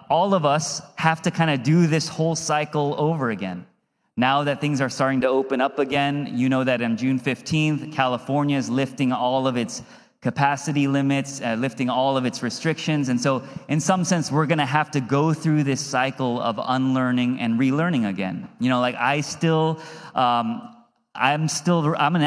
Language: English